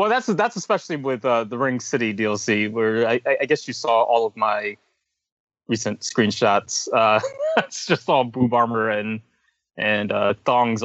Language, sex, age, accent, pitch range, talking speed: English, male, 20-39, American, 115-165 Hz, 170 wpm